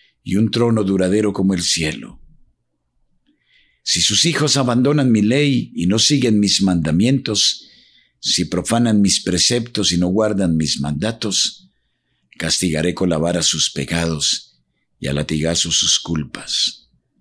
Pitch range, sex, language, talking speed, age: 85-120 Hz, male, Spanish, 130 wpm, 50-69